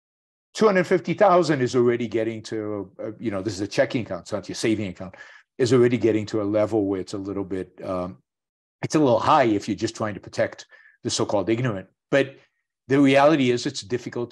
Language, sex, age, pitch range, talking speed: English, male, 50-69, 105-125 Hz, 220 wpm